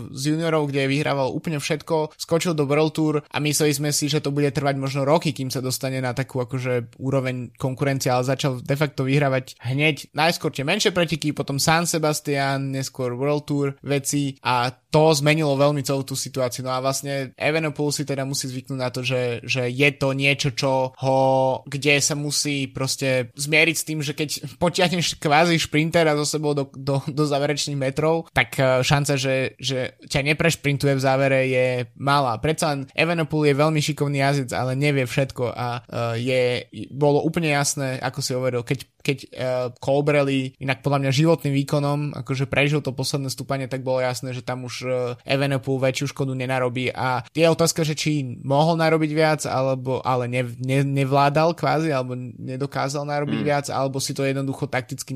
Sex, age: male, 20-39